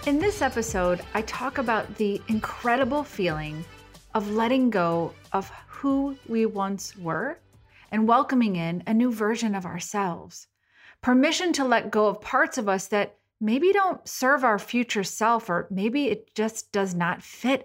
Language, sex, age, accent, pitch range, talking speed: English, female, 30-49, American, 190-260 Hz, 160 wpm